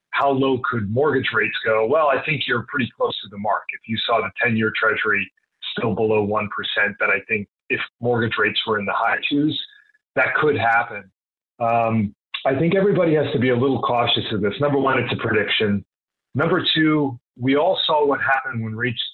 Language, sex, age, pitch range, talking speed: English, male, 40-59, 110-140 Hz, 200 wpm